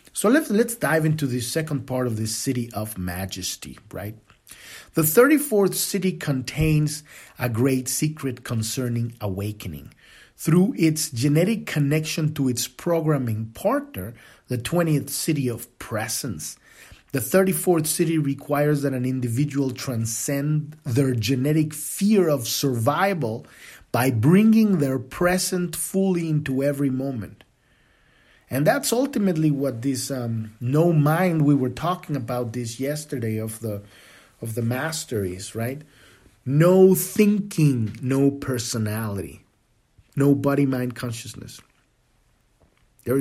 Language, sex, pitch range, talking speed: English, male, 120-155 Hz, 120 wpm